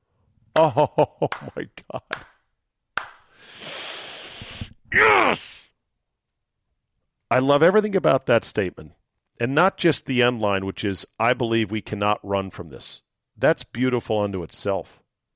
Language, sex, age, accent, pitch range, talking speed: English, male, 50-69, American, 100-130 Hz, 115 wpm